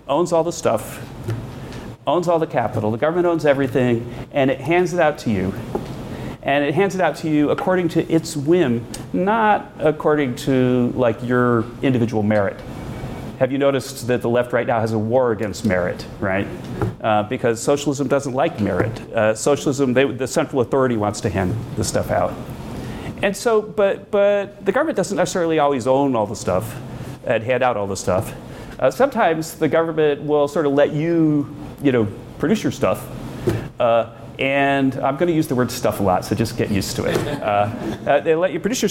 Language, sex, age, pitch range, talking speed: English, male, 40-59, 120-165 Hz, 195 wpm